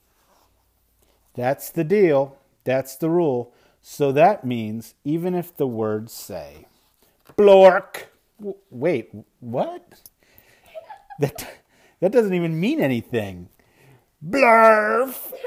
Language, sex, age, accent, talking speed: English, male, 40-59, American, 95 wpm